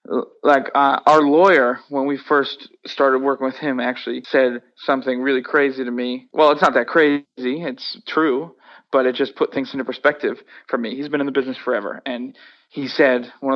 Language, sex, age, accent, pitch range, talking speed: English, male, 20-39, American, 135-175 Hz, 195 wpm